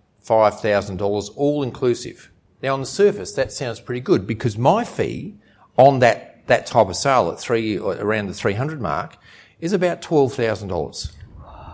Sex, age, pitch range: male, 50-69, 100-140 Hz